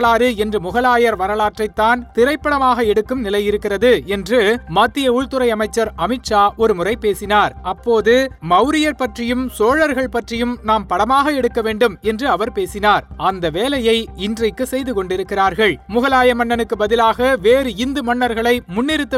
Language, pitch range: Tamil, 210-250 Hz